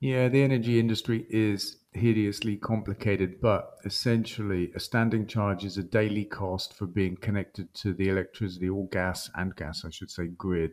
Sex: male